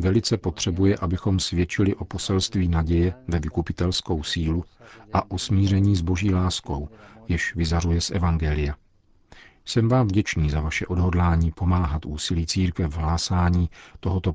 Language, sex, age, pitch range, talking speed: Czech, male, 50-69, 85-95 Hz, 135 wpm